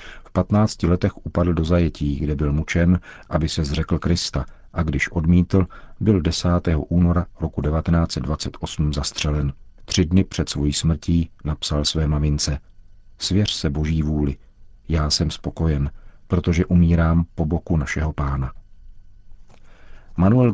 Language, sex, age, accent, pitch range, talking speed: Czech, male, 50-69, native, 75-90 Hz, 130 wpm